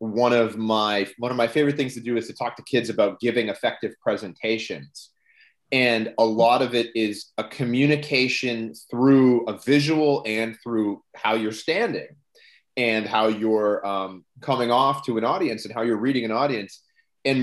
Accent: American